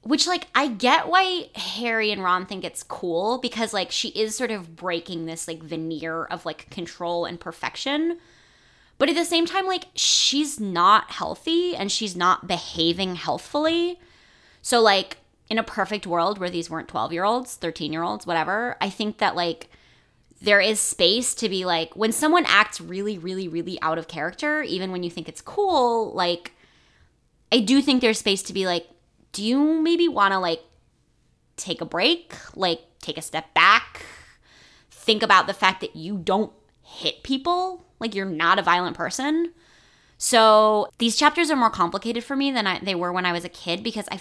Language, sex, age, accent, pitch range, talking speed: English, female, 20-39, American, 175-250 Hz, 185 wpm